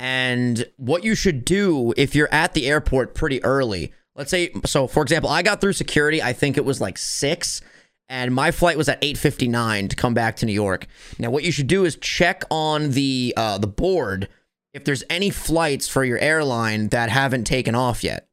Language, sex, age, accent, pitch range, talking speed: English, male, 30-49, American, 115-145 Hz, 205 wpm